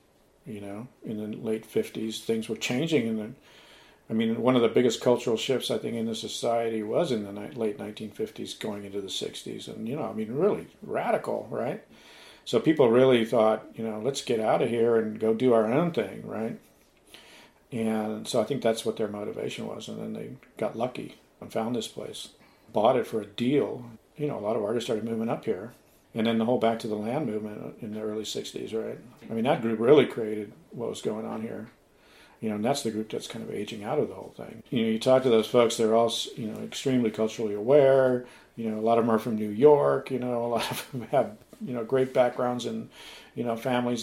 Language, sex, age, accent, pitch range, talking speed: English, male, 50-69, American, 110-120 Hz, 235 wpm